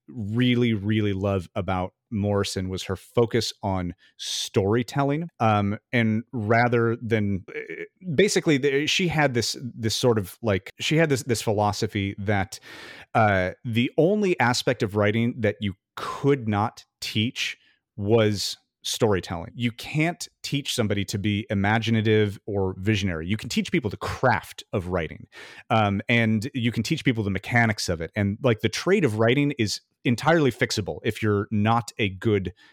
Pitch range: 95-120 Hz